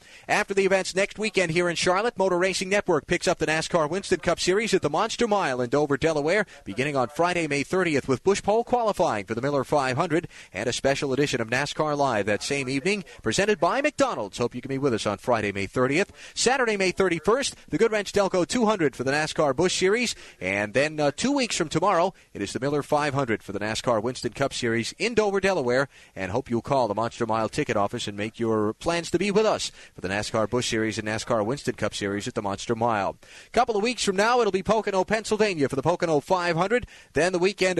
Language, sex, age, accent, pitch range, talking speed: English, male, 30-49, American, 125-190 Hz, 225 wpm